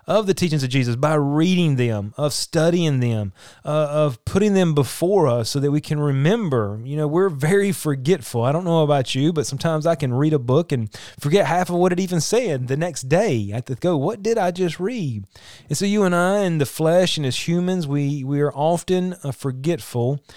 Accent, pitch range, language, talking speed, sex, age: American, 130-160 Hz, English, 225 wpm, male, 30-49